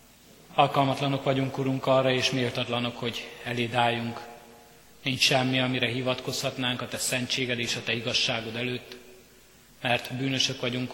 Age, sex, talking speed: 30-49, male, 130 wpm